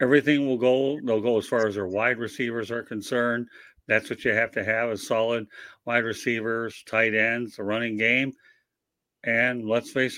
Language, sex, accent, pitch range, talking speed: English, male, American, 110-135 Hz, 185 wpm